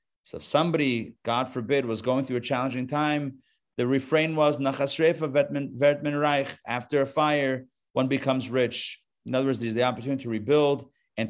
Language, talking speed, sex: English, 170 wpm, male